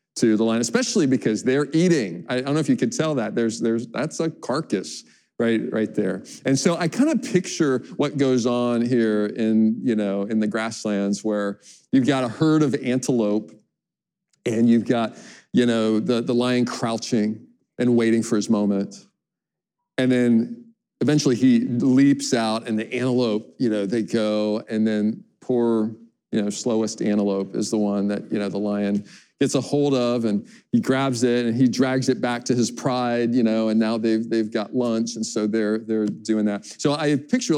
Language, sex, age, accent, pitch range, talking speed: English, male, 40-59, American, 110-130 Hz, 195 wpm